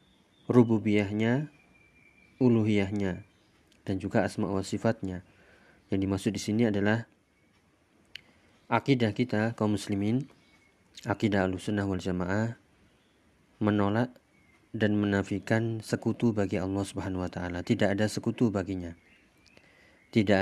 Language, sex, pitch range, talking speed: Indonesian, male, 95-110 Hz, 100 wpm